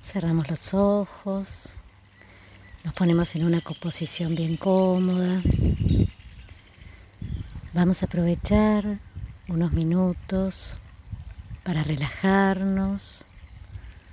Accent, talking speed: Argentinian, 70 wpm